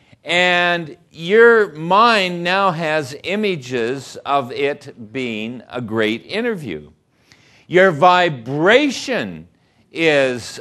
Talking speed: 85 wpm